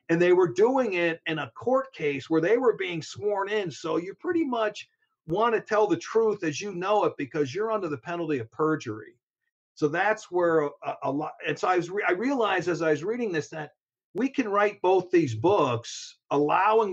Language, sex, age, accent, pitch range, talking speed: English, male, 50-69, American, 135-175 Hz, 210 wpm